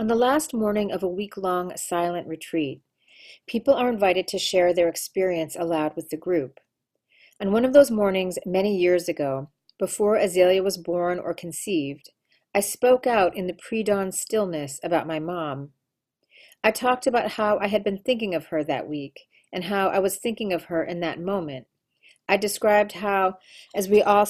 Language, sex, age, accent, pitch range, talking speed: English, female, 40-59, American, 165-205 Hz, 180 wpm